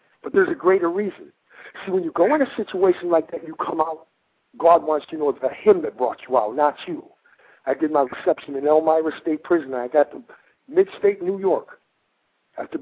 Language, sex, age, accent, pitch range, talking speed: English, male, 60-79, American, 145-220 Hz, 210 wpm